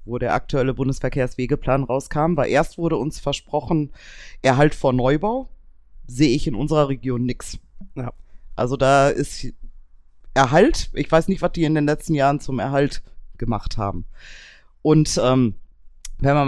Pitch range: 125-165 Hz